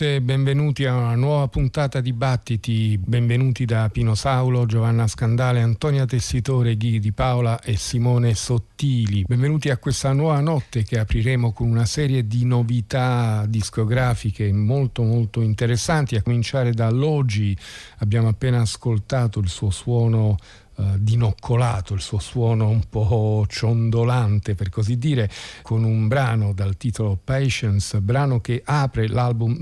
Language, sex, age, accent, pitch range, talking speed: Italian, male, 50-69, native, 105-130 Hz, 135 wpm